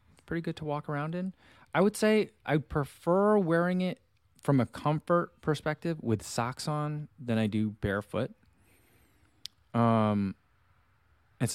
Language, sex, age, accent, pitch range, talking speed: English, male, 20-39, American, 100-130 Hz, 135 wpm